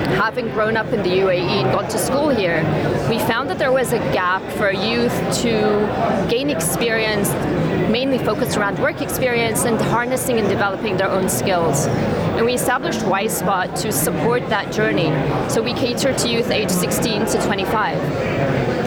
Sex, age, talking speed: female, 30-49, 165 wpm